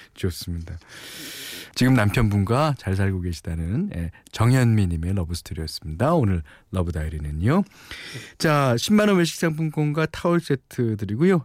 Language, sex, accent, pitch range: Korean, male, native, 95-145 Hz